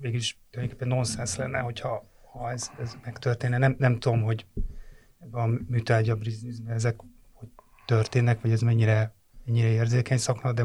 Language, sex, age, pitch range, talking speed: Hungarian, male, 30-49, 115-130 Hz, 145 wpm